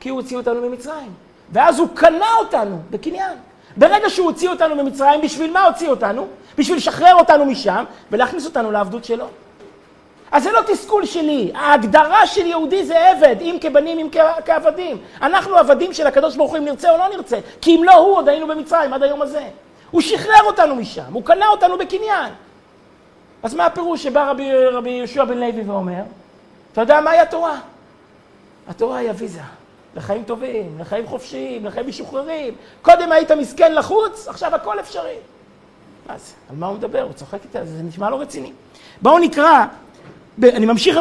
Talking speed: 165 wpm